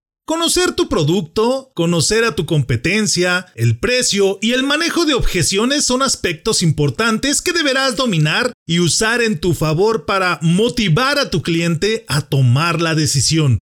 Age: 40-59